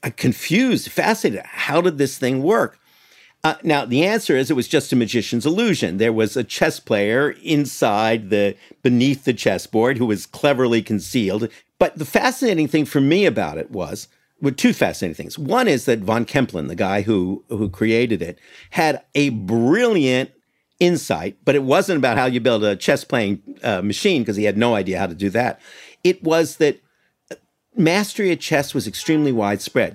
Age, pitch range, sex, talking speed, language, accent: 50-69, 110-150 Hz, male, 180 wpm, English, American